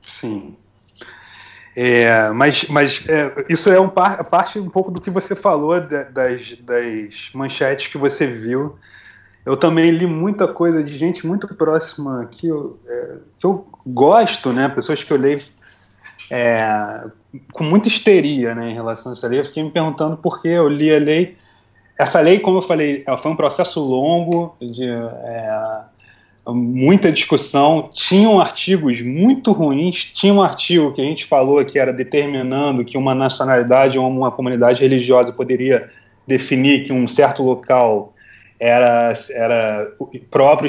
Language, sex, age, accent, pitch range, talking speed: Portuguese, male, 30-49, Brazilian, 125-165 Hz, 145 wpm